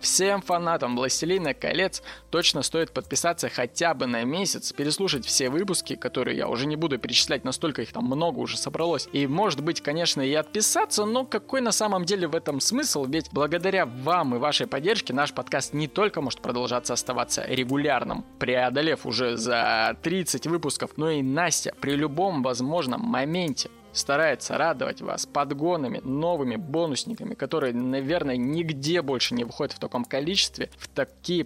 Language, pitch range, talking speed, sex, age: Russian, 130-175 Hz, 160 wpm, male, 20-39